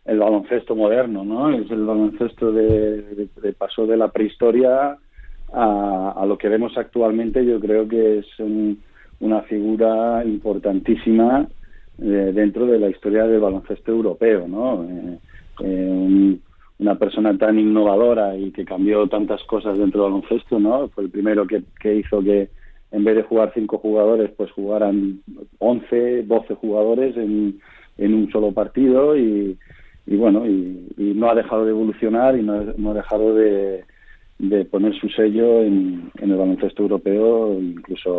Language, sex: Spanish, male